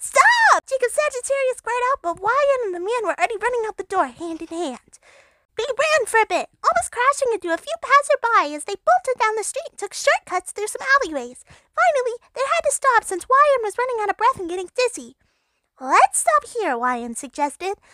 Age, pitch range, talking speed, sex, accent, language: 20-39, 300-450 Hz, 200 wpm, female, American, English